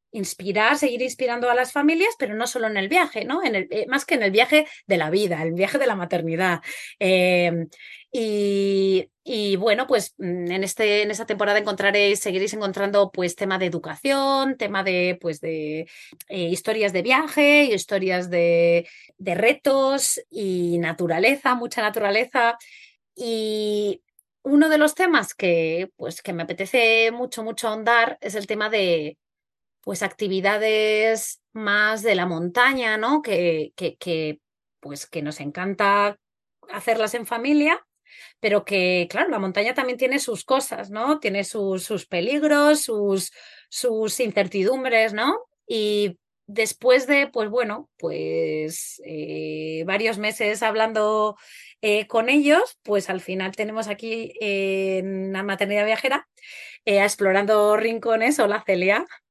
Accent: Spanish